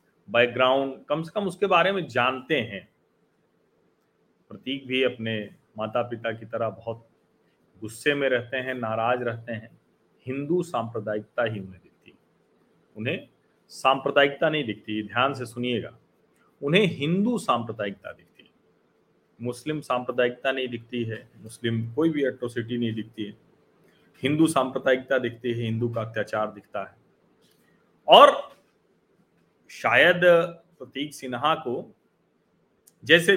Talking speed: 120 wpm